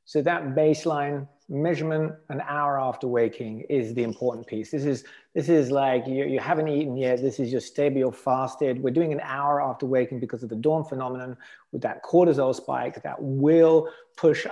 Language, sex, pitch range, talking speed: English, male, 130-155 Hz, 185 wpm